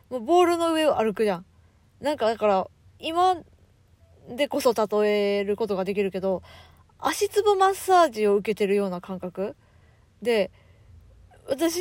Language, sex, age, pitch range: Japanese, female, 20-39, 190-280 Hz